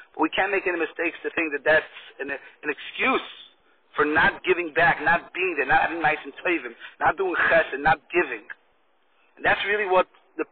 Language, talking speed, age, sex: English, 195 wpm, 40-59, male